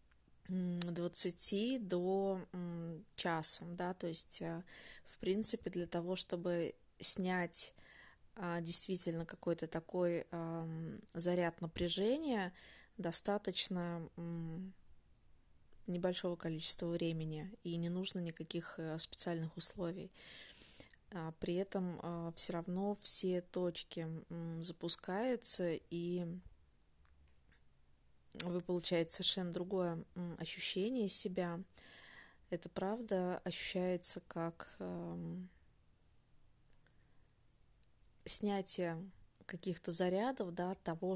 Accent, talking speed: native, 75 wpm